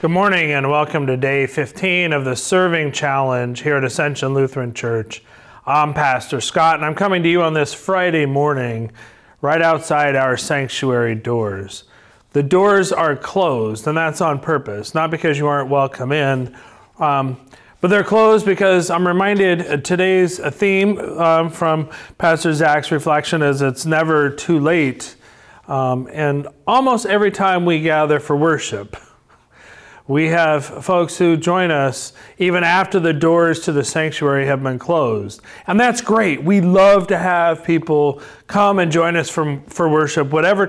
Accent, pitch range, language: American, 140-170 Hz, English